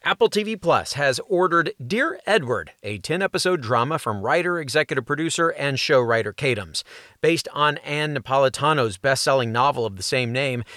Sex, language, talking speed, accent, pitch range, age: male, English, 155 wpm, American, 125-175 Hz, 40-59